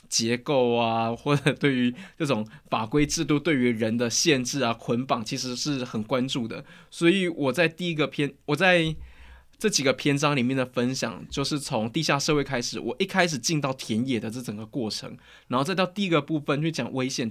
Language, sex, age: Chinese, male, 20-39